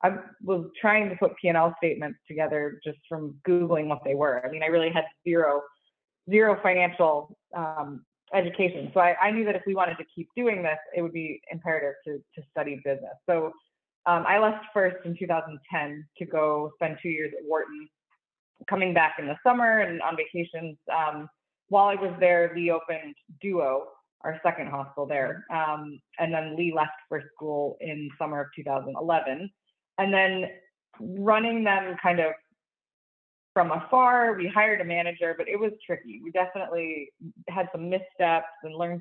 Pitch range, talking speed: 155-190 Hz, 170 wpm